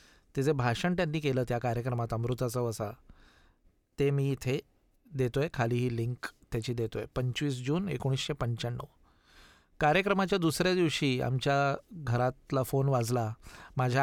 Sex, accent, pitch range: male, native, 120-145 Hz